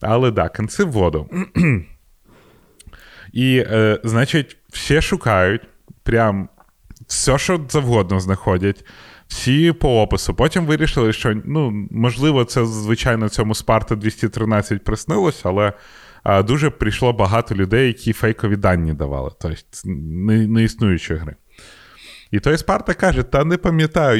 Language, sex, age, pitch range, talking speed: Ukrainian, male, 20-39, 95-125 Hz, 115 wpm